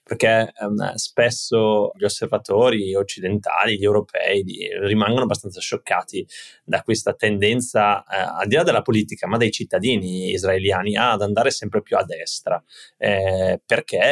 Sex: male